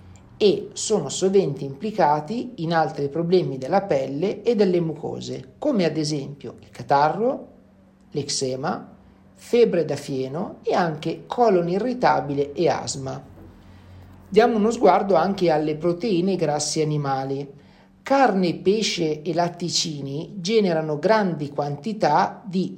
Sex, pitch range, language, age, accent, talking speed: male, 145-185 Hz, Italian, 50-69, native, 115 wpm